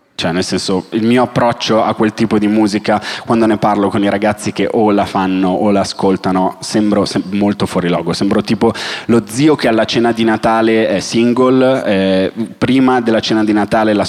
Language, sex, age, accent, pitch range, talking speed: Italian, male, 30-49, native, 100-130 Hz, 190 wpm